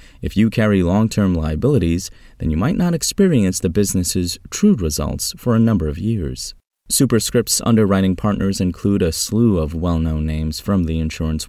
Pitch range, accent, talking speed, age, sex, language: 80-110 Hz, American, 160 wpm, 30-49, male, English